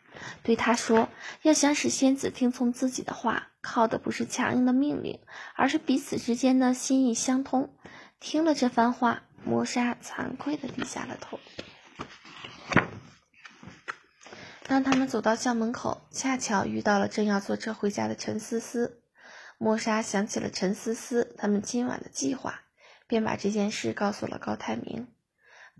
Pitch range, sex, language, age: 220-265 Hz, female, Chinese, 20-39